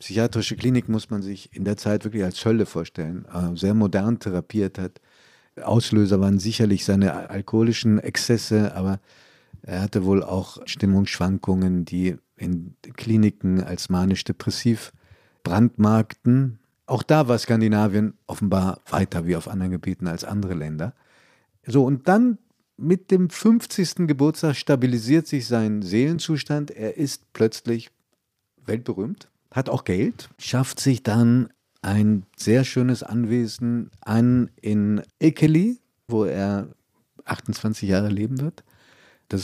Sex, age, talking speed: male, 50-69, 125 wpm